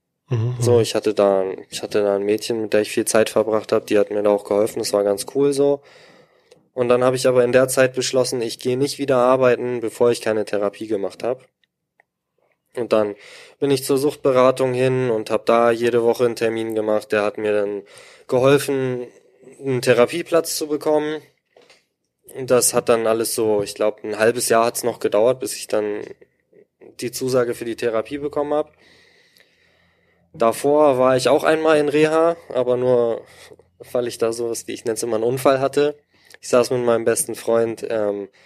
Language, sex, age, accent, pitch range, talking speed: German, male, 20-39, German, 115-145 Hz, 190 wpm